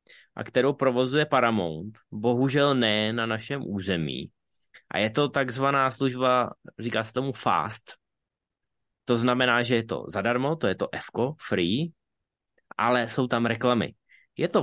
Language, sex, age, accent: Czech, male, 20-39, native